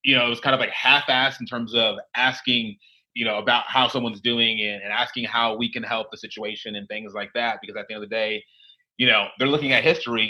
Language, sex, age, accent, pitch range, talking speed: English, male, 30-49, American, 110-140 Hz, 255 wpm